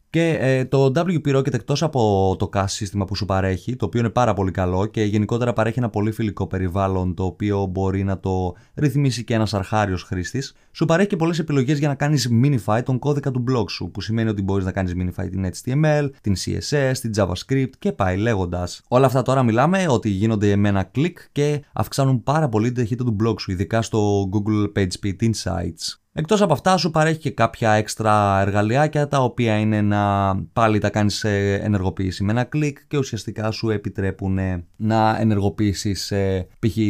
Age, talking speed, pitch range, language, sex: 20-39, 190 wpm, 100-130 Hz, Greek, male